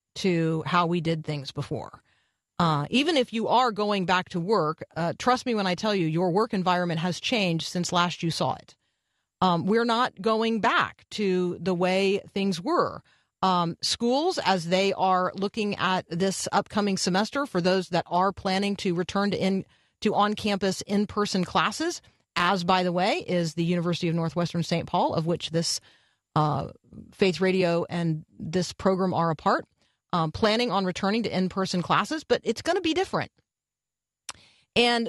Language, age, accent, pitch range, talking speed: English, 40-59, American, 175-215 Hz, 175 wpm